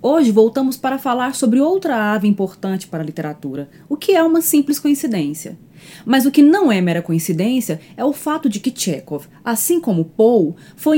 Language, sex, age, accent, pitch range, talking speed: Portuguese, female, 20-39, Brazilian, 180-275 Hz, 185 wpm